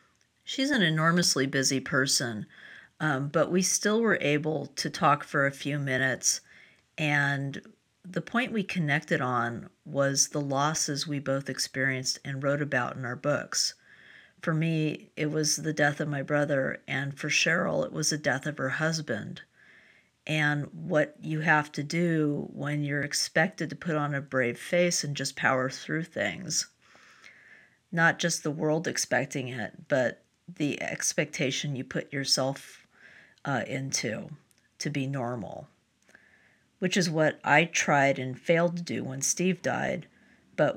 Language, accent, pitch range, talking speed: English, American, 135-165 Hz, 155 wpm